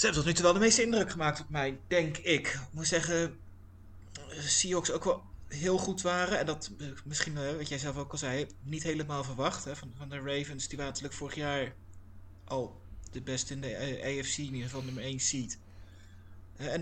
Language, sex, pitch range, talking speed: Dutch, male, 100-155 Hz, 205 wpm